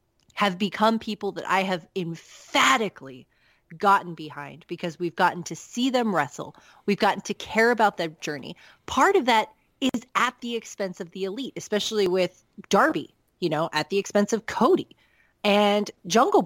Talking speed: 165 wpm